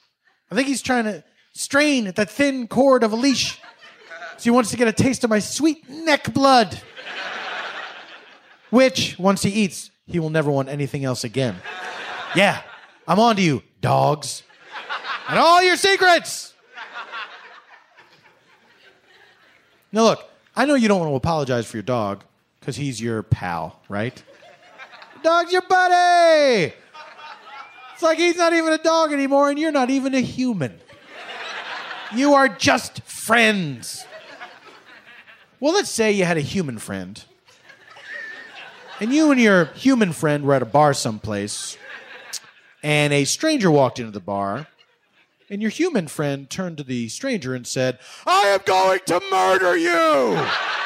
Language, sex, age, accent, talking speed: Danish, male, 30-49, American, 150 wpm